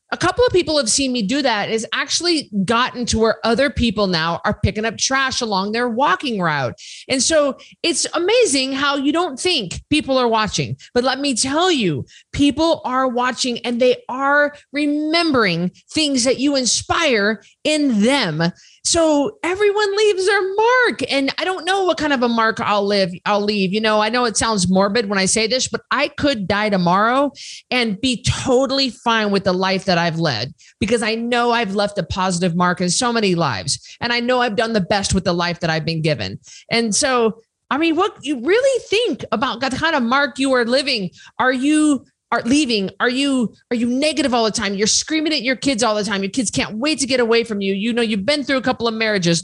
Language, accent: English, American